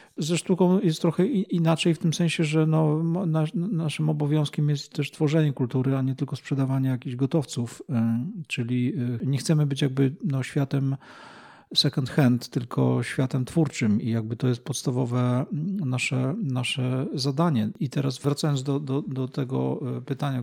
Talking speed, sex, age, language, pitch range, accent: 140 wpm, male, 40-59, Polish, 125-150 Hz, native